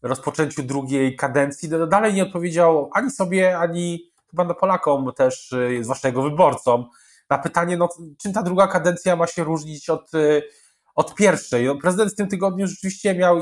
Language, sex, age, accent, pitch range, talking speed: Polish, male, 20-39, native, 135-180 Hz, 160 wpm